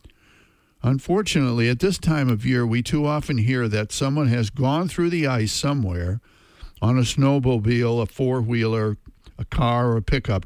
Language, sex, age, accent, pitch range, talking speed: English, male, 60-79, American, 105-135 Hz, 160 wpm